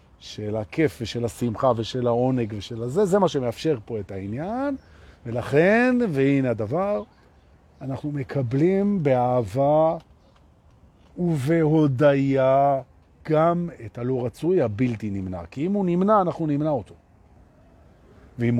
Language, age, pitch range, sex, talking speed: Hebrew, 40-59, 105-160 Hz, male, 115 wpm